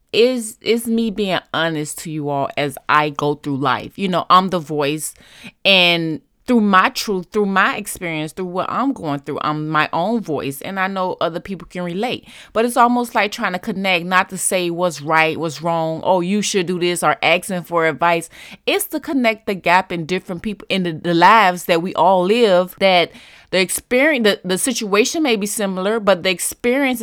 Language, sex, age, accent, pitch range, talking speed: English, female, 20-39, American, 165-225 Hz, 200 wpm